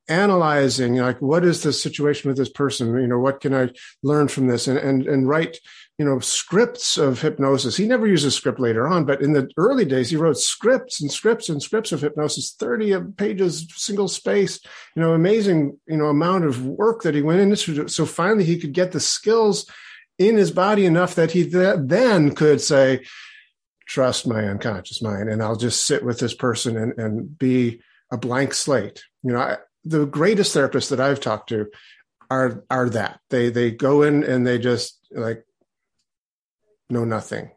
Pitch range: 125-175 Hz